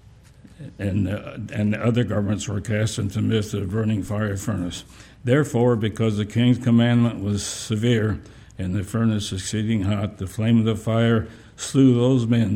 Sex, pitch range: male, 105-120 Hz